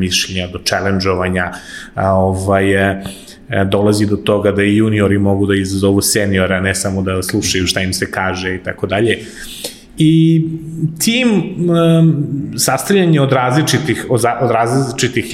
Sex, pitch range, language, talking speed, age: male, 100-125 Hz, English, 120 wpm, 30-49